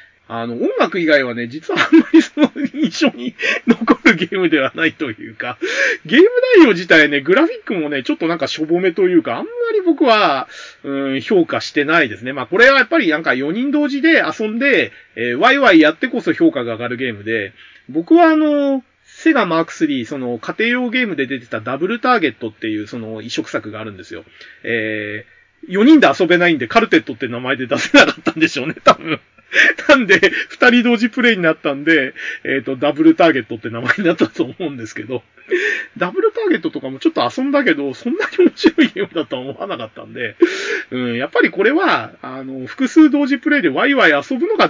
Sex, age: male, 30-49